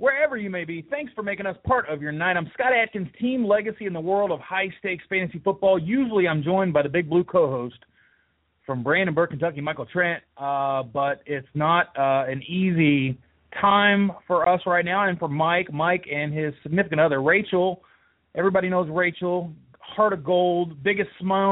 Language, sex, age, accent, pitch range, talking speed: English, male, 30-49, American, 135-180 Hz, 185 wpm